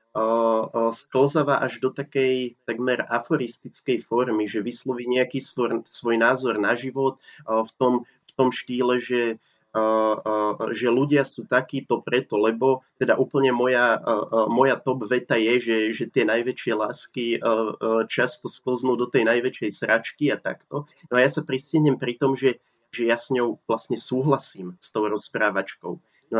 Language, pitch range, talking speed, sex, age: Slovak, 115-135 Hz, 145 wpm, male, 20-39